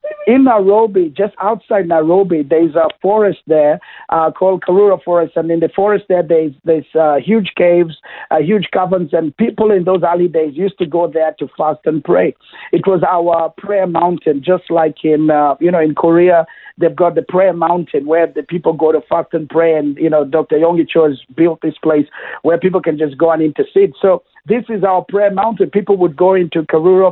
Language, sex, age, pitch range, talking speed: English, male, 50-69, 165-190 Hz, 210 wpm